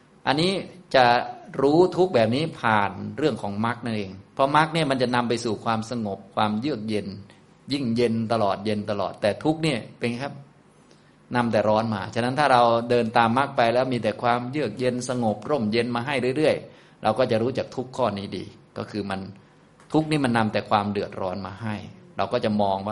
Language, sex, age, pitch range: Thai, male, 20-39, 105-130 Hz